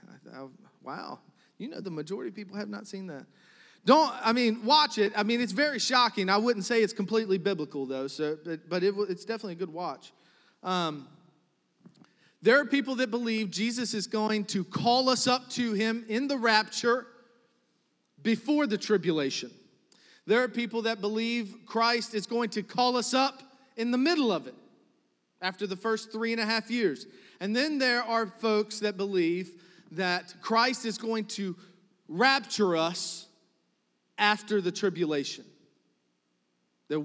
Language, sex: English, male